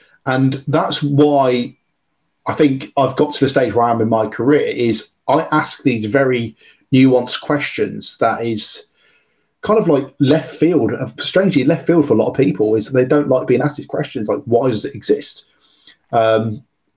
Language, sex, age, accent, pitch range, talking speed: English, male, 30-49, British, 120-145 Hz, 185 wpm